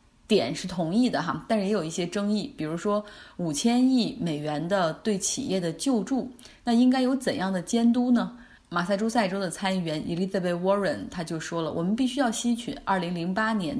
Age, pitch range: 20-39, 175-240 Hz